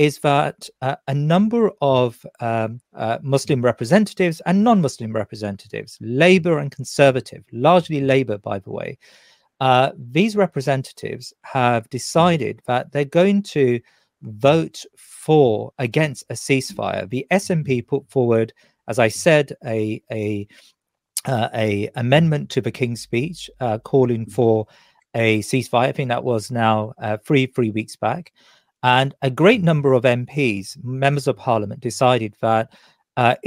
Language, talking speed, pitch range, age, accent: English, 140 wpm, 115-150 Hz, 40-59, British